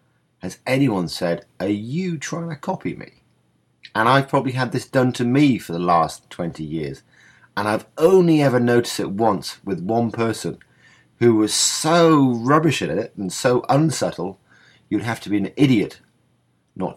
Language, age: English, 40-59